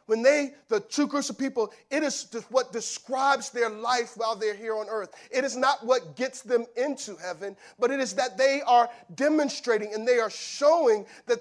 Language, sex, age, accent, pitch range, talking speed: English, male, 40-59, American, 230-275 Hz, 200 wpm